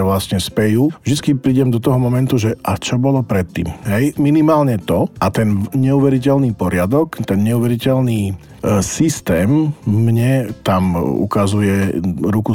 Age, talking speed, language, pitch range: 40-59, 125 wpm, Slovak, 95-115 Hz